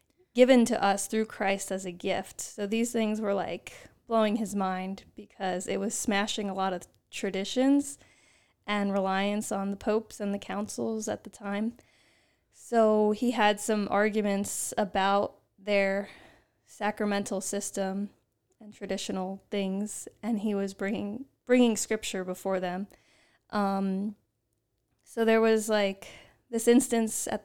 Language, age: English, 20-39